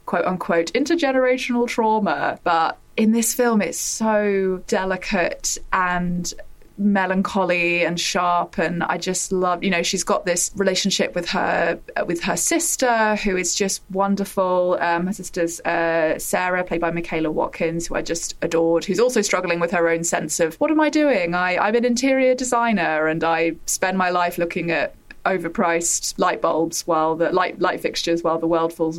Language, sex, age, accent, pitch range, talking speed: English, female, 20-39, British, 170-195 Hz, 170 wpm